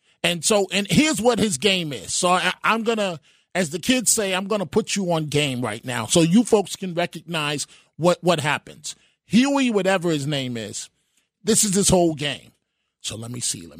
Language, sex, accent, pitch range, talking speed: English, male, American, 155-210 Hz, 210 wpm